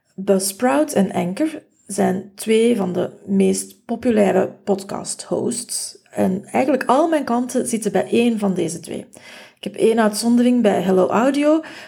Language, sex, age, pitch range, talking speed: Dutch, female, 30-49, 195-270 Hz, 140 wpm